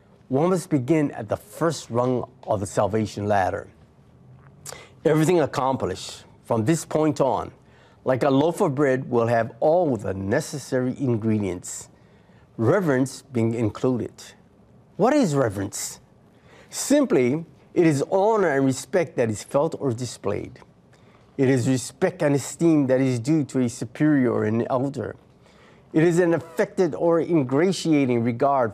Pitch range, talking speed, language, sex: 120-170 Hz, 140 wpm, English, male